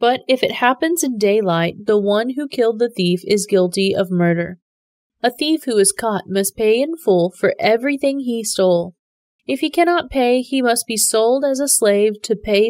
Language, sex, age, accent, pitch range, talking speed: English, female, 20-39, American, 195-250 Hz, 200 wpm